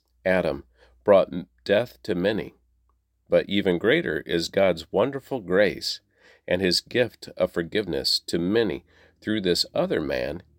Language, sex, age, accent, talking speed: English, male, 40-59, American, 130 wpm